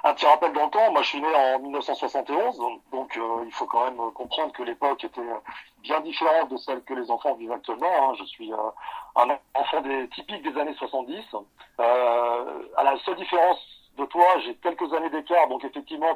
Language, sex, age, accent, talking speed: French, male, 40-59, French, 195 wpm